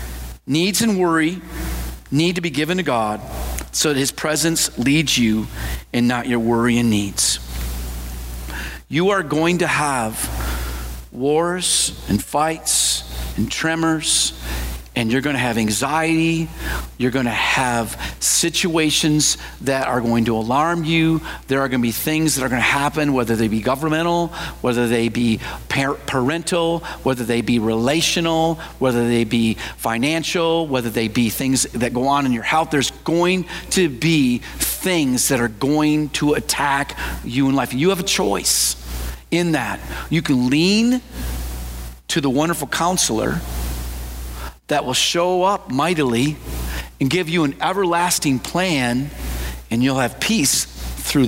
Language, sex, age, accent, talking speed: English, male, 50-69, American, 145 wpm